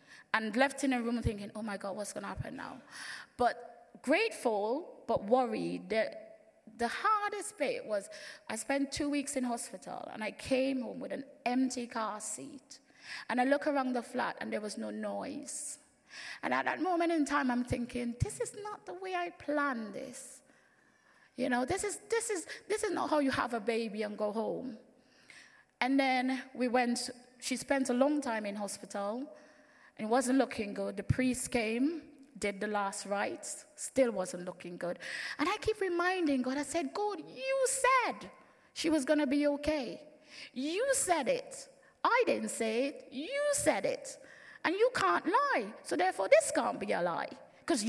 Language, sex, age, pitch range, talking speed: English, female, 20-39, 235-305 Hz, 185 wpm